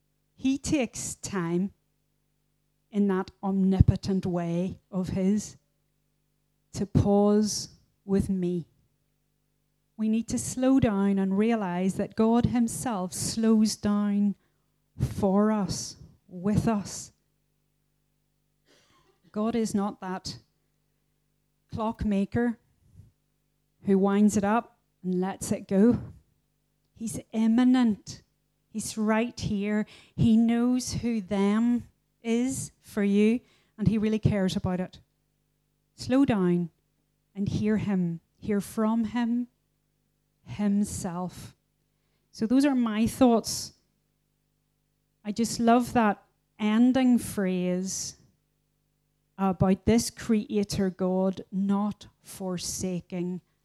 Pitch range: 185-225 Hz